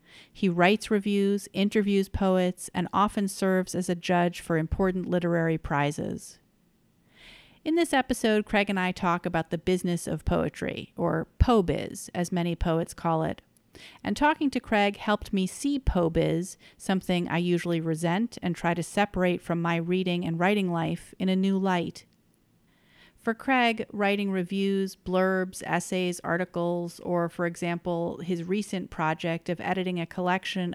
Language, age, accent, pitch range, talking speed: English, 40-59, American, 170-195 Hz, 150 wpm